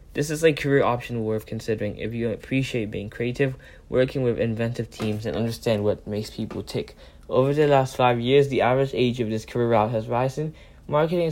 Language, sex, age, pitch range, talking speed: English, male, 10-29, 105-130 Hz, 200 wpm